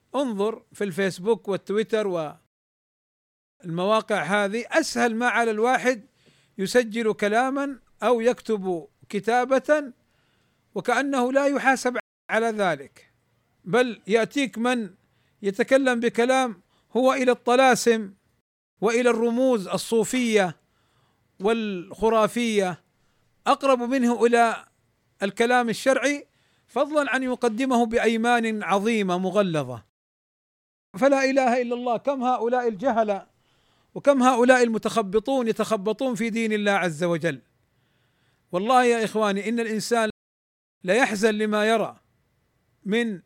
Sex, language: male, Arabic